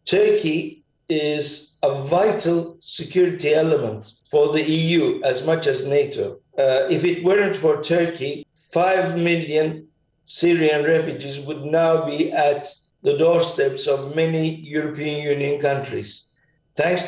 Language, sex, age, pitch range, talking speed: English, male, 50-69, 150-190 Hz, 125 wpm